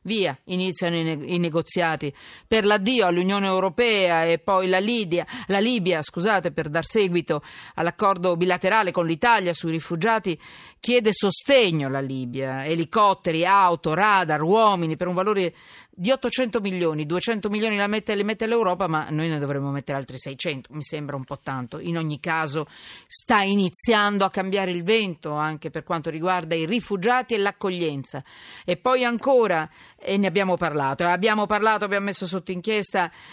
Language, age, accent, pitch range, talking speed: Italian, 50-69, native, 165-220 Hz, 160 wpm